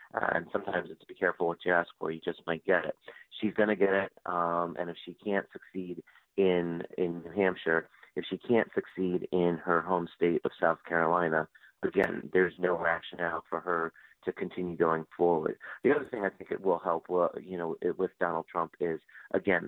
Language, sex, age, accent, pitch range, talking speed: English, male, 30-49, American, 85-90 Hz, 200 wpm